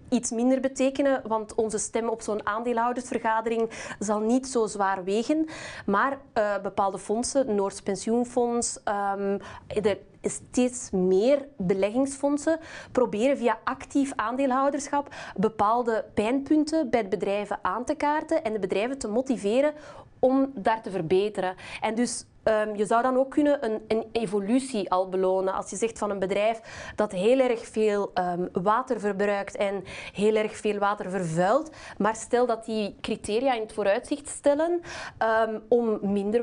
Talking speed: 150 wpm